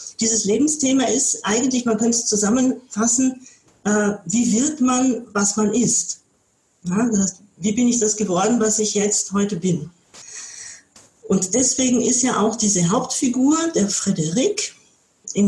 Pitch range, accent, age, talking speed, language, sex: 195-245 Hz, German, 40-59, 135 wpm, German, female